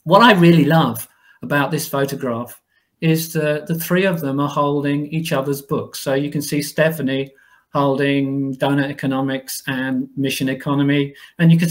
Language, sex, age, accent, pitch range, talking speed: English, male, 40-59, British, 130-160 Hz, 165 wpm